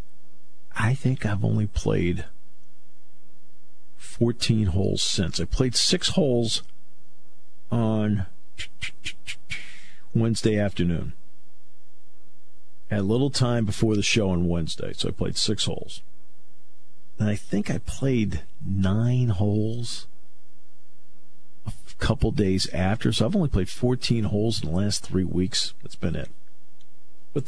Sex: male